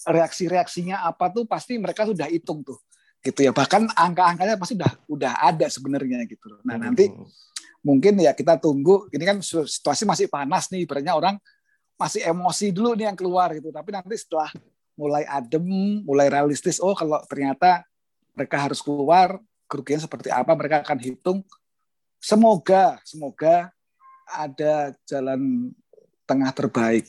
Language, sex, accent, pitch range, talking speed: Indonesian, male, native, 140-195 Hz, 140 wpm